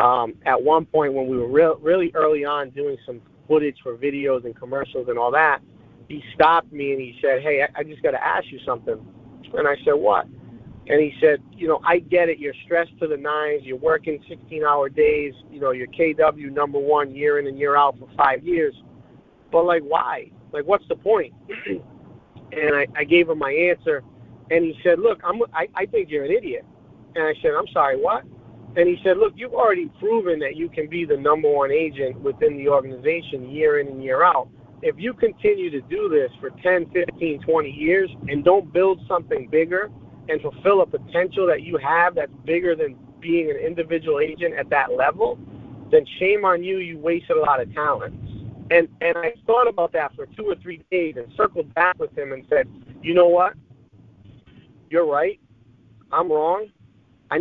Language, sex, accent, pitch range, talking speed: English, male, American, 145-210 Hz, 200 wpm